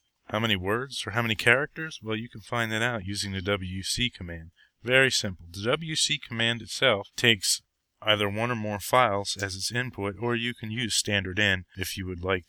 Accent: American